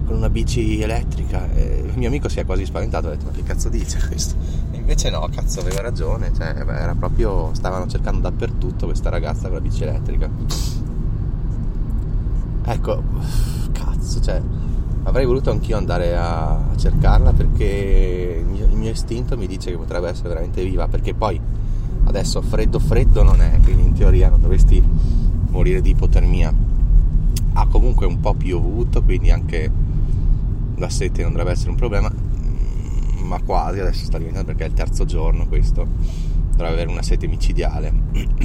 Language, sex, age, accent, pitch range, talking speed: Italian, male, 20-39, native, 80-110 Hz, 160 wpm